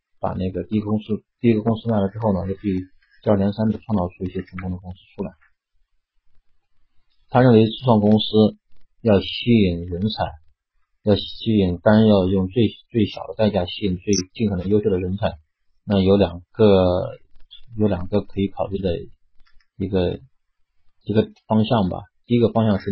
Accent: native